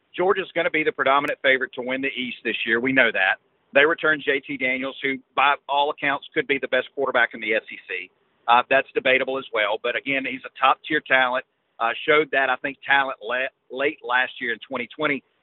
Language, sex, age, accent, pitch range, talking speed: English, male, 40-59, American, 130-165 Hz, 210 wpm